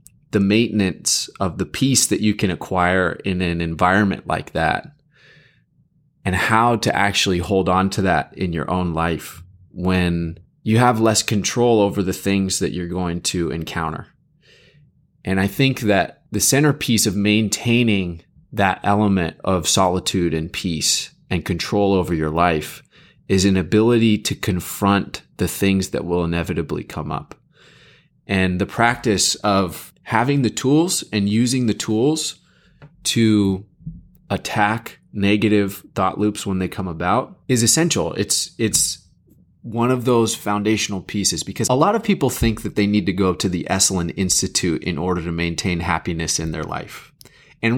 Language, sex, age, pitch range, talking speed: English, male, 30-49, 90-115 Hz, 155 wpm